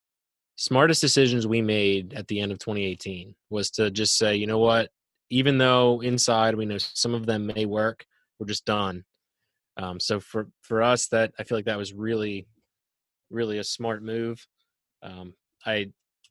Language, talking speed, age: English, 175 wpm, 20-39